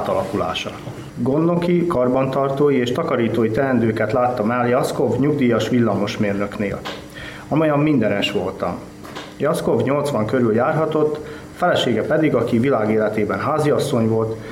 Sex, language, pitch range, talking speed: male, Hungarian, 110-140 Hz, 100 wpm